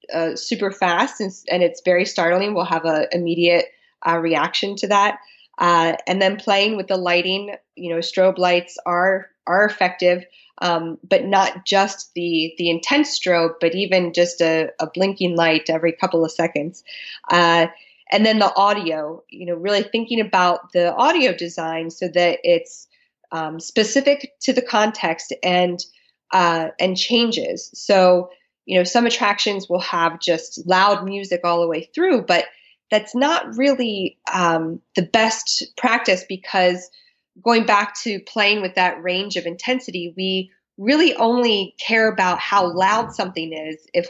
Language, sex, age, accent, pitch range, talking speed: English, female, 20-39, American, 170-210 Hz, 160 wpm